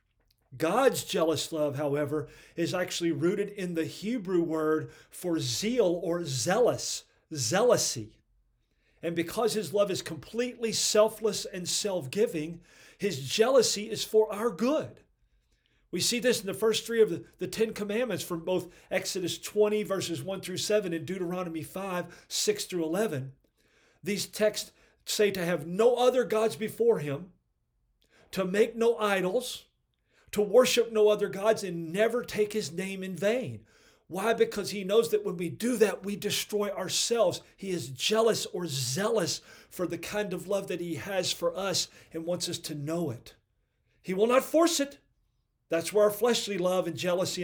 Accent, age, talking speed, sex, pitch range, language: American, 40-59, 165 wpm, male, 160-210 Hz, English